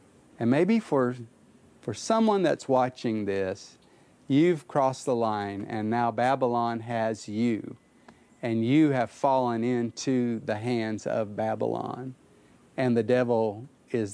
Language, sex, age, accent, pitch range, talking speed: English, male, 40-59, American, 110-135 Hz, 125 wpm